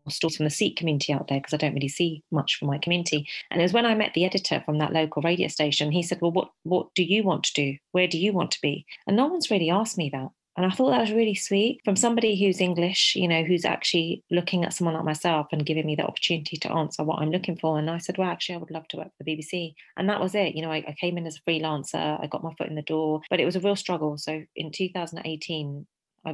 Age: 30-49